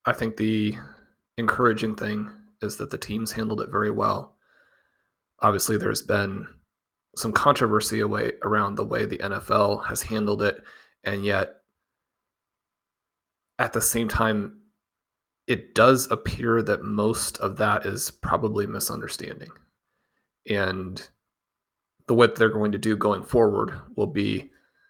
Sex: male